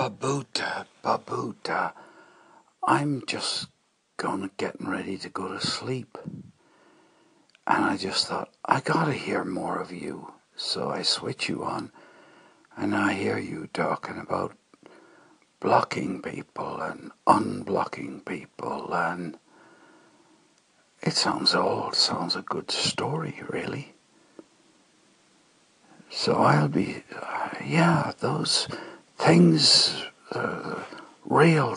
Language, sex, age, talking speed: English, male, 60-79, 105 wpm